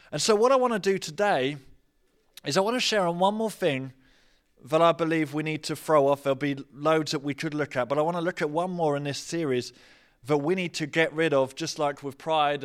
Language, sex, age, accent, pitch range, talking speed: English, male, 20-39, British, 140-170 Hz, 260 wpm